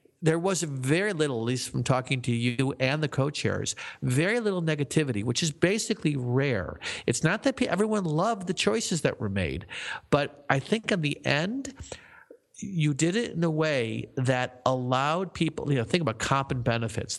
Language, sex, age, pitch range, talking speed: English, male, 50-69, 120-160 Hz, 180 wpm